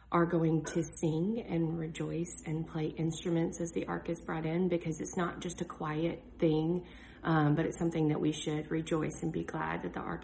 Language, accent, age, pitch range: English, American, 30-49, 155-180 Hz